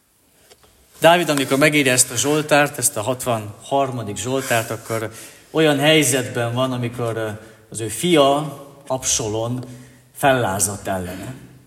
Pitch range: 110-145 Hz